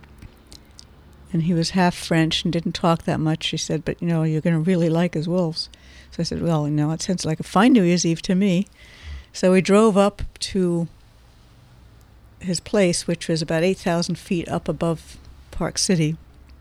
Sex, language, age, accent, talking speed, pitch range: female, English, 60-79, American, 195 wpm, 140-175 Hz